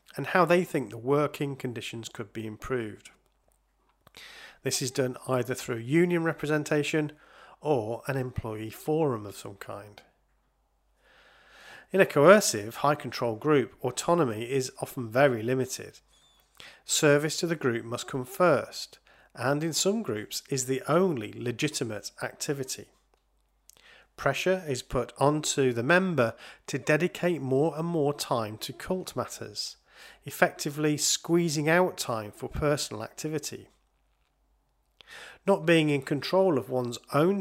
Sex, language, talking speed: male, English, 125 wpm